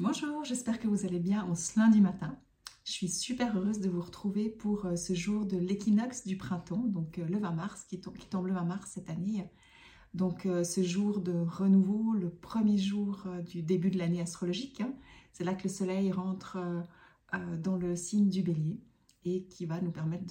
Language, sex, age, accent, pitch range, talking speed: French, female, 30-49, French, 175-210 Hz, 195 wpm